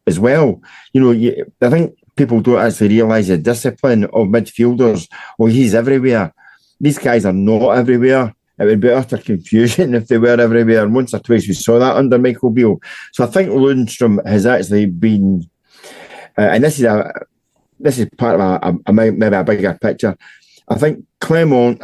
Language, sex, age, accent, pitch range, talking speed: English, male, 50-69, British, 110-130 Hz, 185 wpm